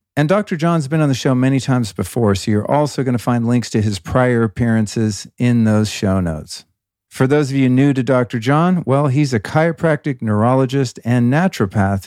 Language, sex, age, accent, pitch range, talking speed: English, male, 50-69, American, 110-140 Hz, 195 wpm